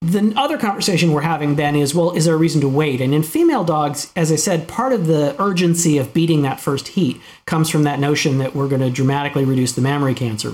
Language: English